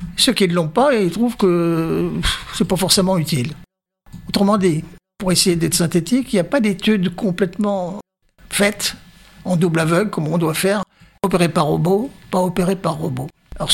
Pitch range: 175-210 Hz